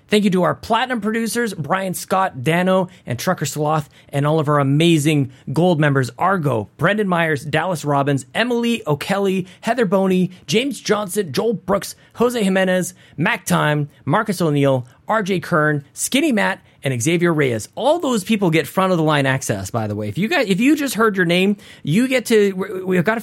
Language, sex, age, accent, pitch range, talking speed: English, male, 30-49, American, 145-210 Hz, 180 wpm